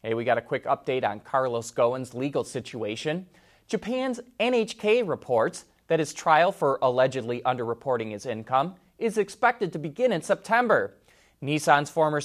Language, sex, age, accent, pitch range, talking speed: English, male, 30-49, American, 125-185 Hz, 145 wpm